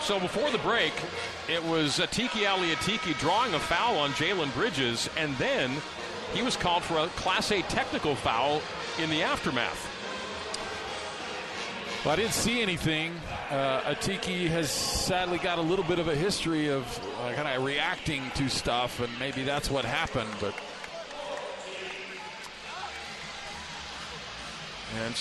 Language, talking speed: English, 140 wpm